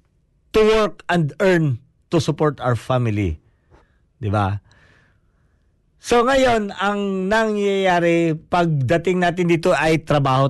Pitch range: 115-175 Hz